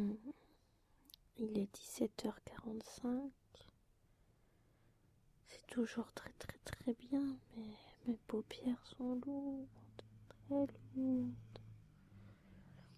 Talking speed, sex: 75 wpm, female